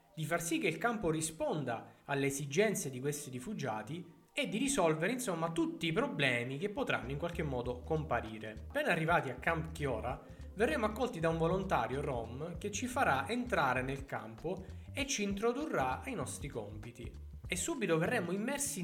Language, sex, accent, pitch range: Italian, male, native, 120-165 Hz